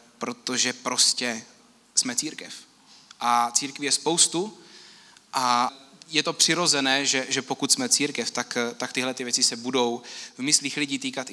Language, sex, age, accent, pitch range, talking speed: Czech, male, 20-39, native, 135-160 Hz, 145 wpm